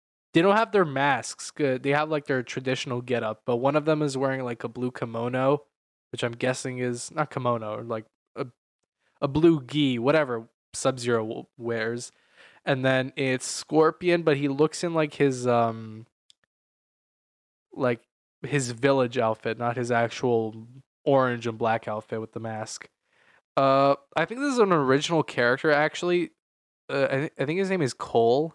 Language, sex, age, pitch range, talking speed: English, male, 10-29, 120-155 Hz, 165 wpm